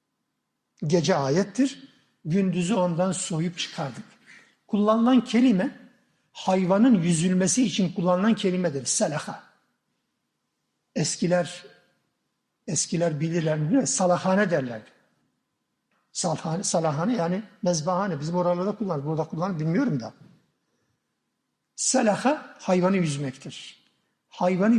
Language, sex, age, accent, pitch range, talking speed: Turkish, male, 60-79, native, 175-230 Hz, 85 wpm